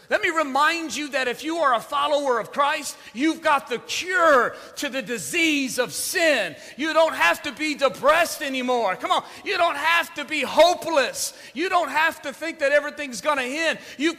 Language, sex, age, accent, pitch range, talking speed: English, male, 40-59, American, 235-315 Hz, 200 wpm